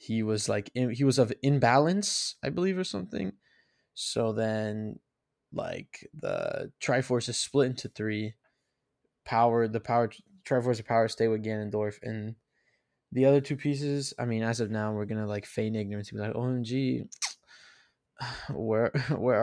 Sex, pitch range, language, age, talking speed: male, 110-135 Hz, English, 20-39, 160 wpm